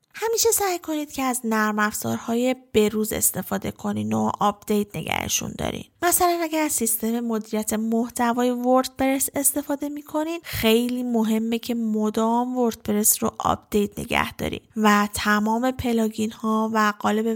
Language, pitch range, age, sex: Persian, 215-260 Hz, 10-29, female